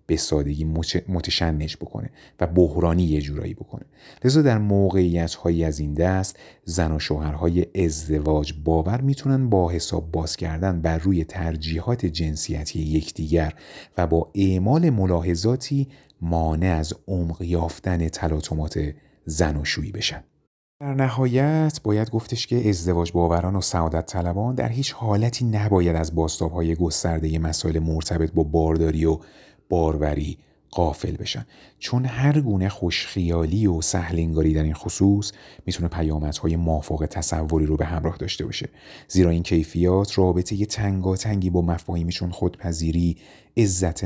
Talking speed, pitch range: 135 wpm, 80-100 Hz